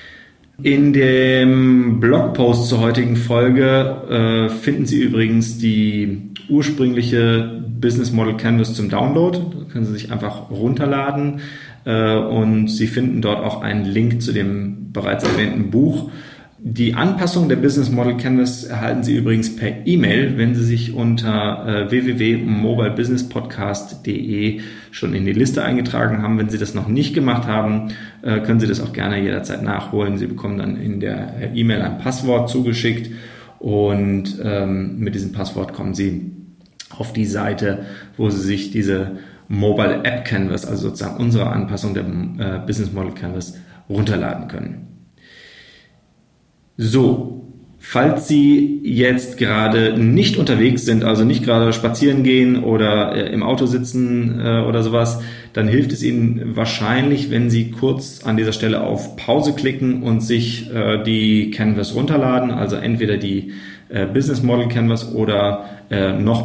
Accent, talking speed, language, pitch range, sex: German, 140 wpm, German, 105-125 Hz, male